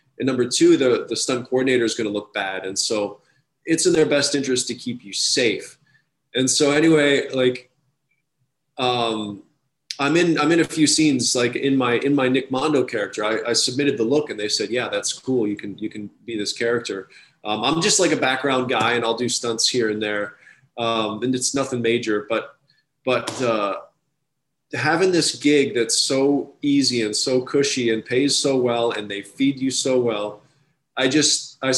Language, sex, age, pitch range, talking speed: English, male, 20-39, 125-155 Hz, 200 wpm